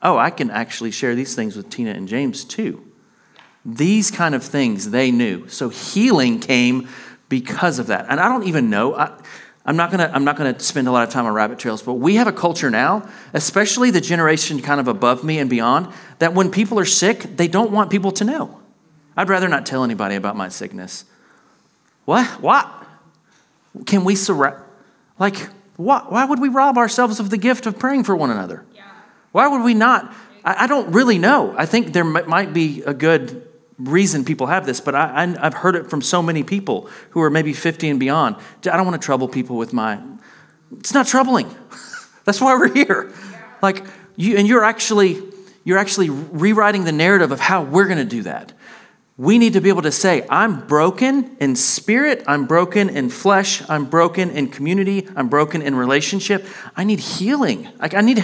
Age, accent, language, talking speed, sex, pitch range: 40-59, American, English, 195 wpm, male, 150-220 Hz